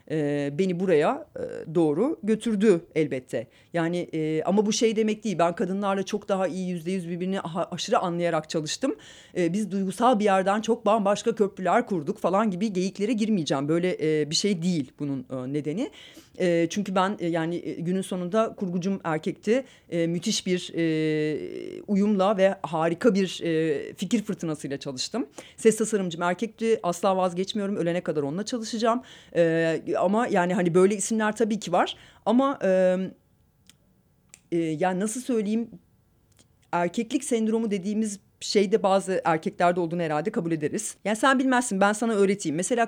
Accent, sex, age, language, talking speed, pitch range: native, female, 40-59, Turkish, 145 wpm, 165-225 Hz